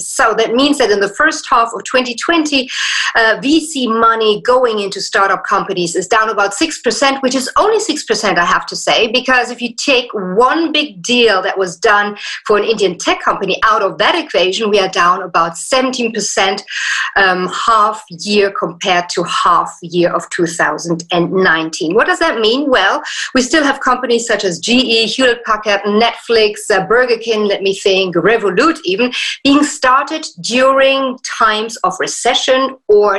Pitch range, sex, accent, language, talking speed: 200-265 Hz, female, German, English, 165 wpm